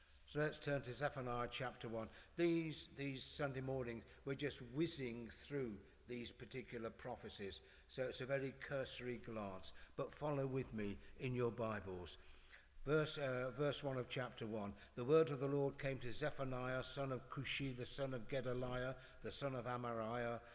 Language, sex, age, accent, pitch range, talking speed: English, male, 60-79, British, 105-130 Hz, 165 wpm